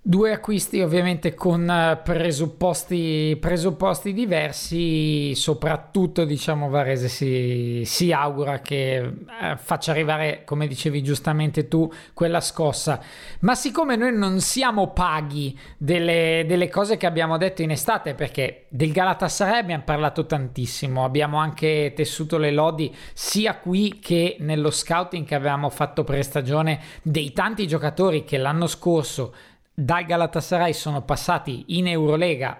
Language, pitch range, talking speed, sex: Italian, 150-195 Hz, 125 wpm, male